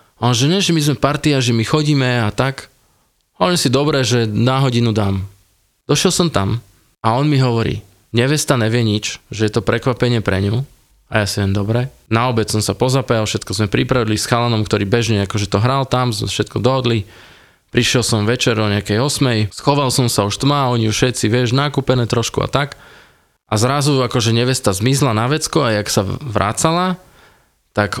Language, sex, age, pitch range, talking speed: Slovak, male, 20-39, 105-130 Hz, 195 wpm